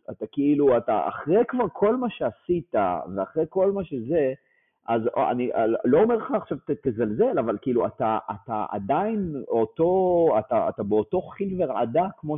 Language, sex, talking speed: Hebrew, male, 155 wpm